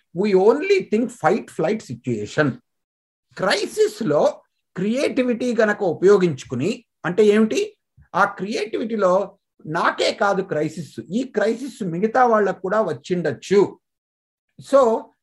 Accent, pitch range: native, 160-225 Hz